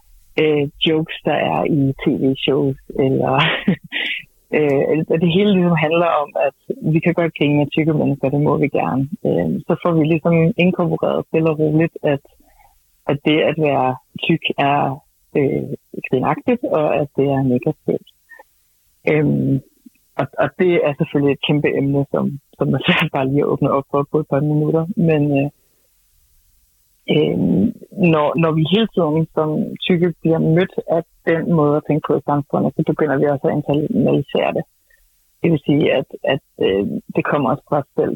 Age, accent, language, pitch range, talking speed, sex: 60-79, native, Danish, 140-170 Hz, 175 wpm, female